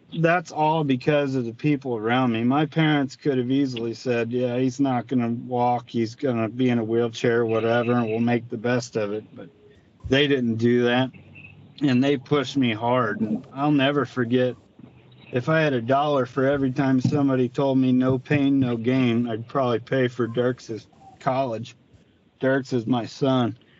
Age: 40-59